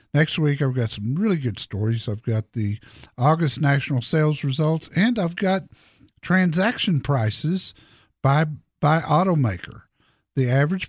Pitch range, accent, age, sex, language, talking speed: 120-175 Hz, American, 50-69, male, English, 140 wpm